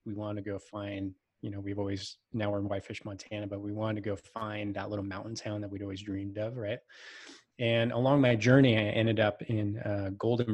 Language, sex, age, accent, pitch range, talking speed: English, male, 20-39, American, 105-120 Hz, 230 wpm